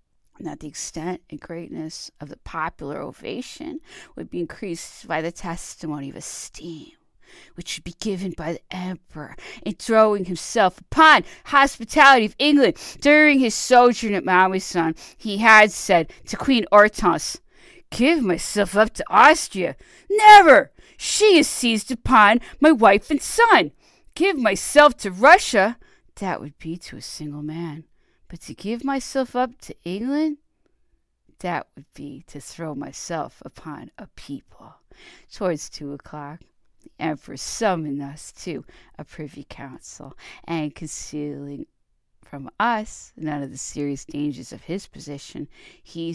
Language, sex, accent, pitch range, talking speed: English, female, American, 160-255 Hz, 140 wpm